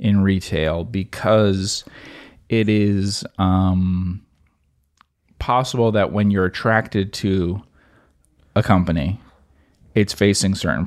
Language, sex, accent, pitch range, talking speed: English, male, American, 85-100 Hz, 95 wpm